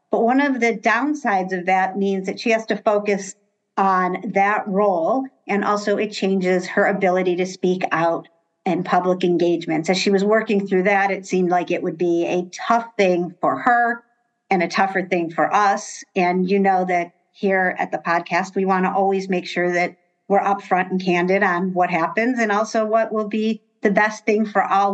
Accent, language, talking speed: American, English, 195 wpm